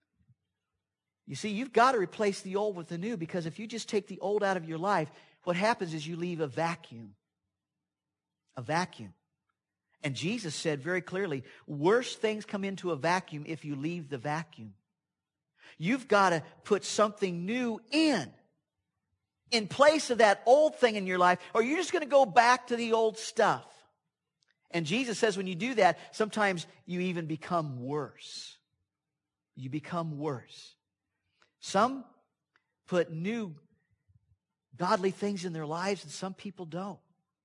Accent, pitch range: American, 155-210 Hz